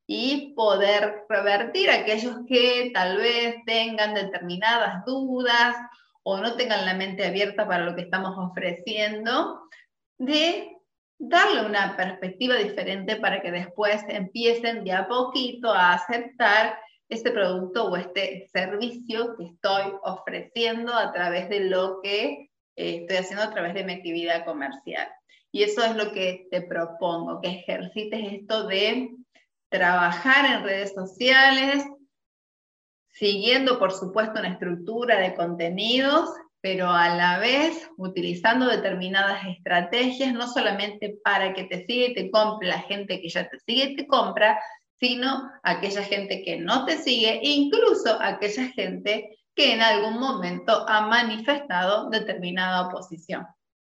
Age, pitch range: 20-39, 185-245 Hz